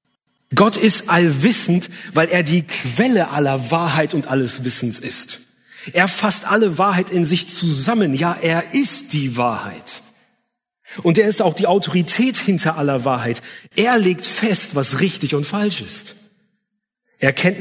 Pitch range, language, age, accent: 140-195 Hz, German, 30-49, German